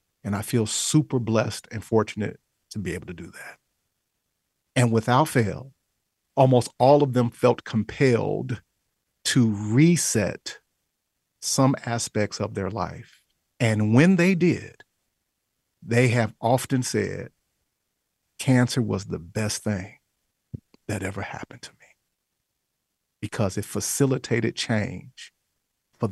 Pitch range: 105-135 Hz